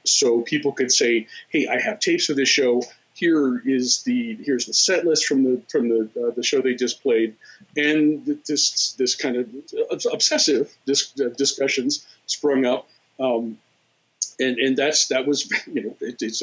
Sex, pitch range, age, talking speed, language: male, 120-205 Hz, 40-59, 170 wpm, English